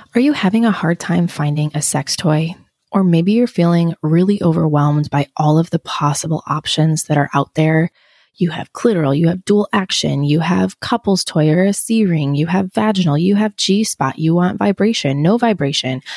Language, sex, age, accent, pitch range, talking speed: English, female, 20-39, American, 150-195 Hz, 190 wpm